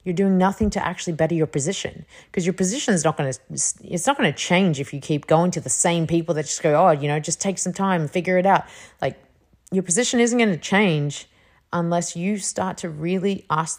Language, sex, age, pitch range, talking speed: English, female, 30-49, 150-190 Hz, 240 wpm